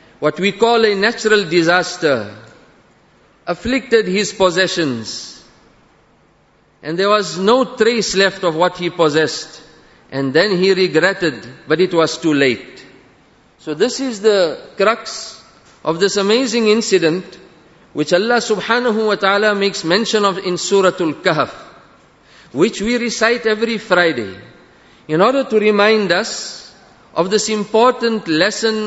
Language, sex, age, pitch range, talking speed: English, male, 50-69, 175-225 Hz, 130 wpm